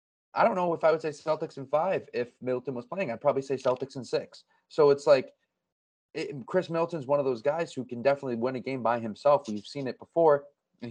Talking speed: 235 wpm